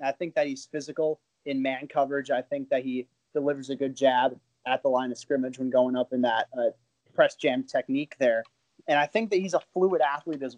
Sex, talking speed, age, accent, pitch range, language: male, 225 wpm, 30-49, American, 125-145 Hz, English